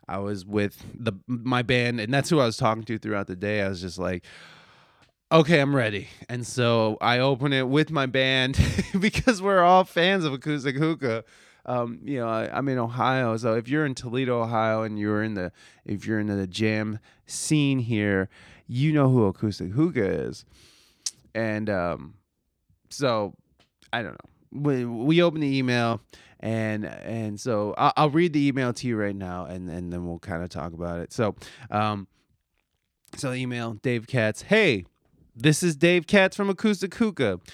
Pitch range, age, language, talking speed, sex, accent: 105-145 Hz, 20-39, English, 180 wpm, male, American